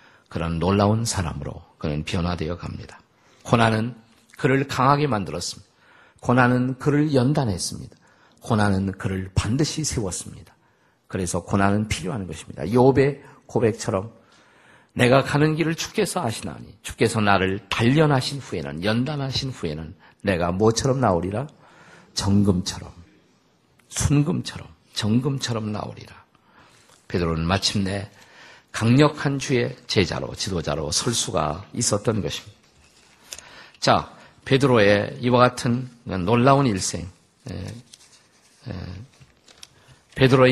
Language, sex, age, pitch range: Korean, male, 50-69, 100-135 Hz